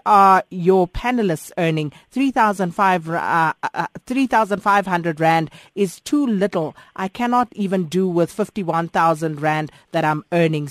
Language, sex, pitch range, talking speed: English, female, 165-205 Hz, 125 wpm